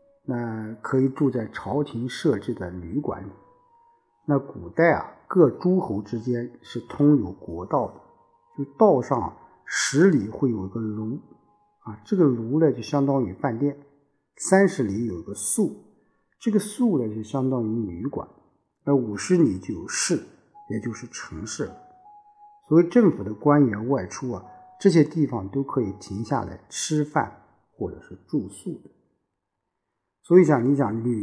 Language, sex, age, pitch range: Chinese, male, 50-69, 110-165 Hz